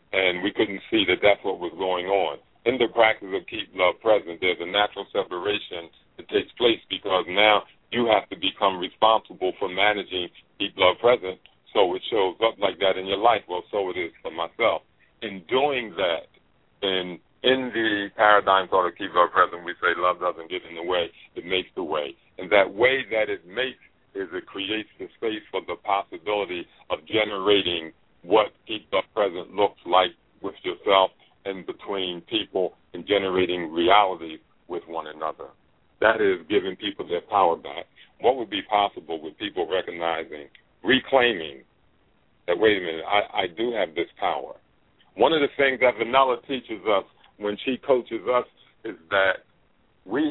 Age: 50-69